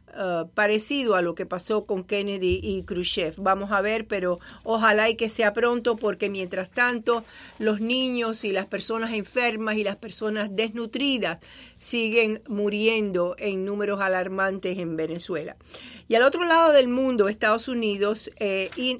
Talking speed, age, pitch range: 150 wpm, 50-69, 200-240 Hz